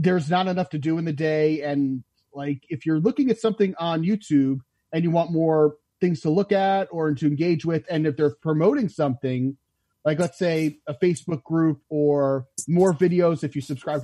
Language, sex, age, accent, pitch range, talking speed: English, male, 30-49, American, 140-170 Hz, 195 wpm